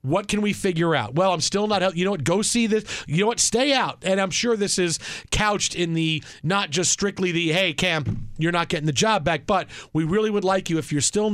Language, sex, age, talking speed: English, male, 40-59, 260 wpm